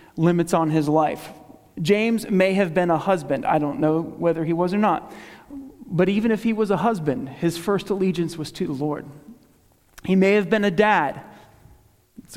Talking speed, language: 190 wpm, English